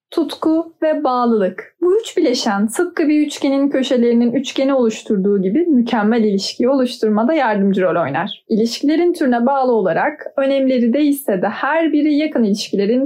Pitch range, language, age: 210-285 Hz, Turkish, 10-29